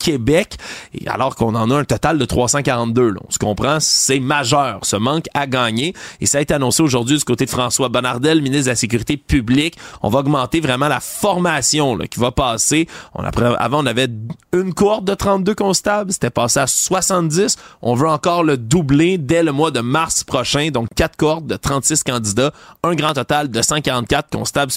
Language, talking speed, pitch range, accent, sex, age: French, 190 wpm, 120-160 Hz, Canadian, male, 30-49